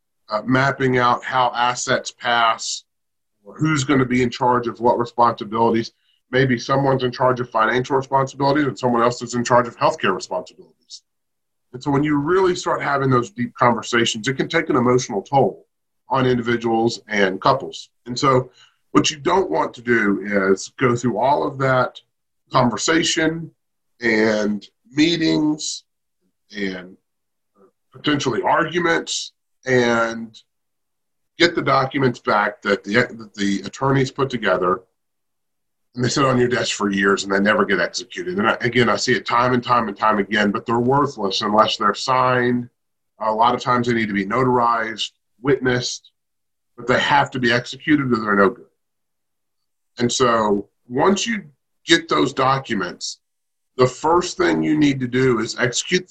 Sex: male